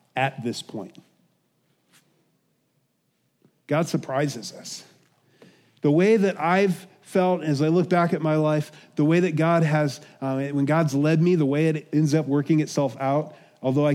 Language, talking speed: English, 165 wpm